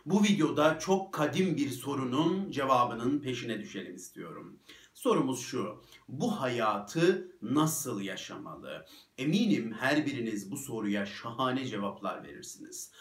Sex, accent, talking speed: male, native, 110 wpm